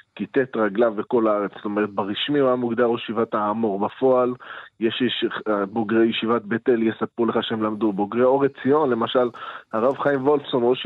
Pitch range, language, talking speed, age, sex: 110-135 Hz, Hebrew, 170 wpm, 20-39, male